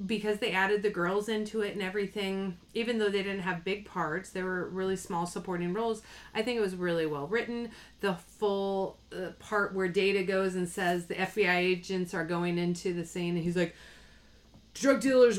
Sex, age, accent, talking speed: female, 30-49, American, 200 wpm